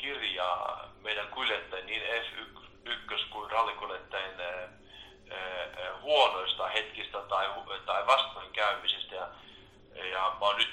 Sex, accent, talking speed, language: male, native, 85 wpm, Finnish